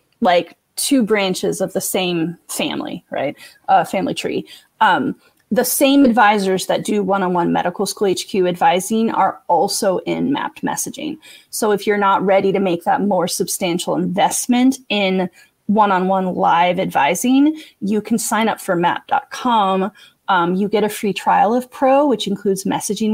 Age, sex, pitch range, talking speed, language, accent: 30-49, female, 185-240 Hz, 150 wpm, English, American